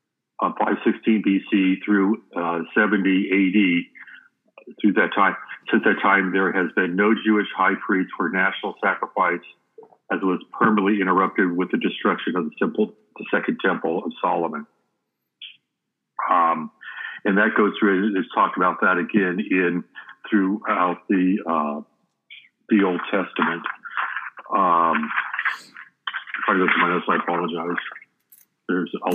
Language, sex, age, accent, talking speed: English, male, 60-79, American, 130 wpm